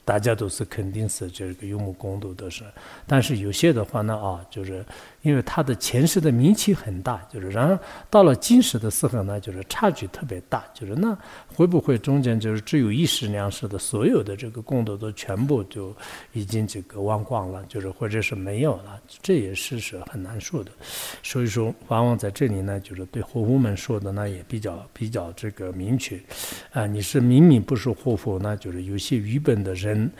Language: English